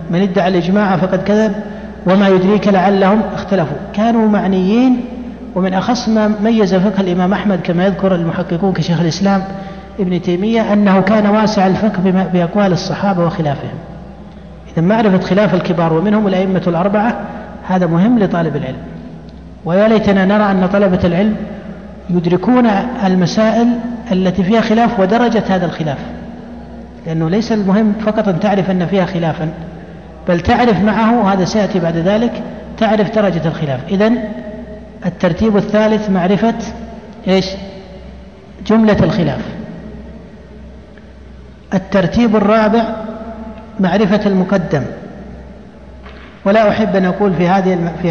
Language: Arabic